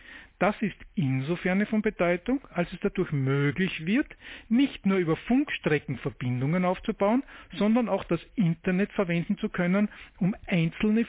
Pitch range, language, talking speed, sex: 155-210 Hz, German, 130 wpm, male